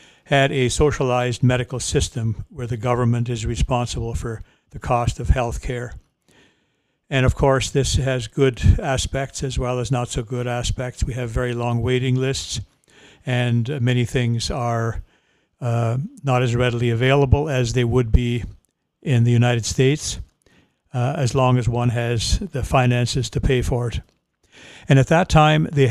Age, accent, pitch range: 60-79, American, 120-135 Hz